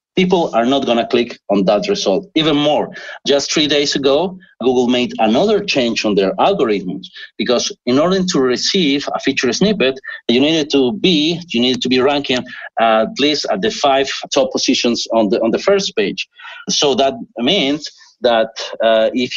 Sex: male